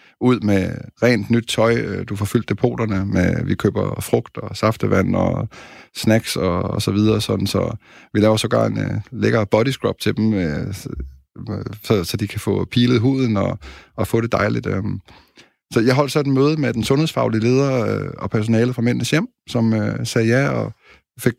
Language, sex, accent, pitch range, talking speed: Danish, male, native, 105-125 Hz, 195 wpm